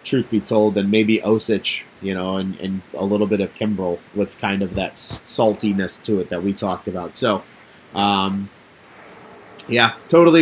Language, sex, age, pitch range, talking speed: English, male, 30-49, 100-125 Hz, 175 wpm